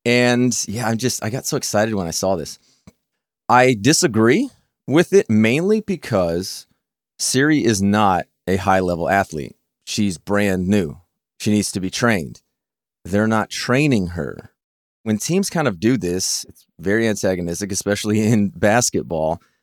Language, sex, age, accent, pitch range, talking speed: English, male, 30-49, American, 95-120 Hz, 150 wpm